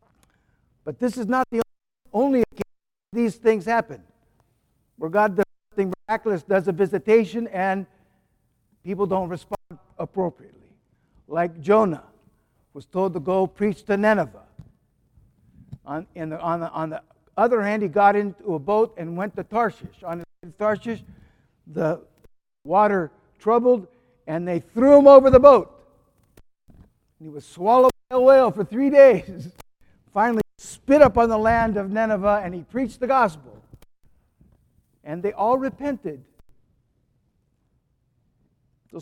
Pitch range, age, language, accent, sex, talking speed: 170-225 Hz, 60-79, English, American, male, 130 wpm